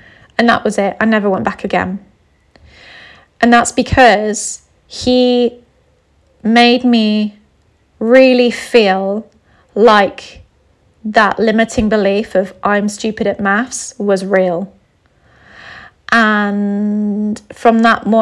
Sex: female